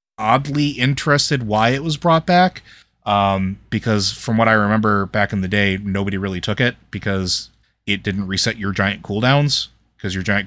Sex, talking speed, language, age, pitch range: male, 180 wpm, English, 30-49, 95-115 Hz